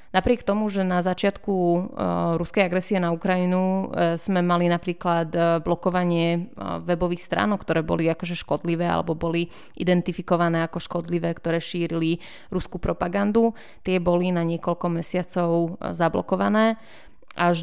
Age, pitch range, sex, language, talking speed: 20-39, 170-185 Hz, female, Czech, 120 wpm